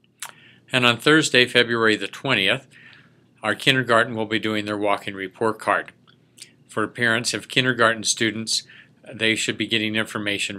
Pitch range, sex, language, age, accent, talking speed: 110-130 Hz, male, English, 50-69, American, 140 wpm